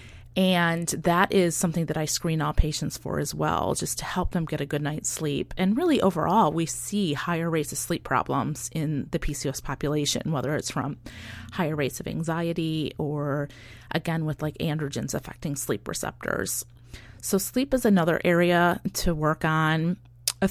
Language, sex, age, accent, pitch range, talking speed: English, female, 30-49, American, 145-180 Hz, 175 wpm